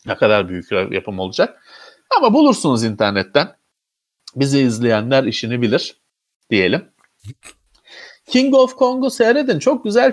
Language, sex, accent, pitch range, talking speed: Turkish, male, native, 115-165 Hz, 120 wpm